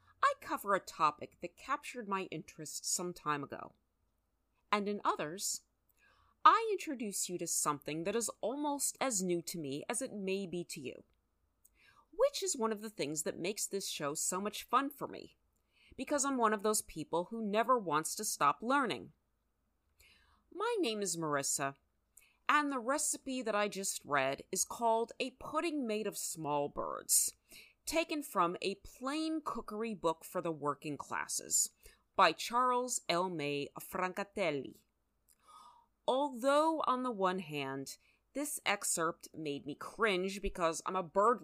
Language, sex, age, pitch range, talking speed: English, female, 30-49, 160-255 Hz, 155 wpm